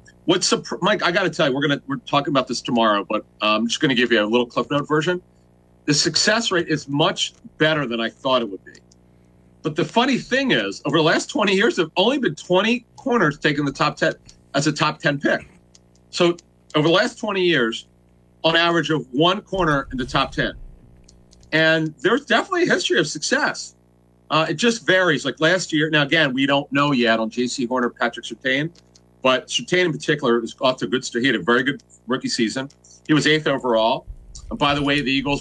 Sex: male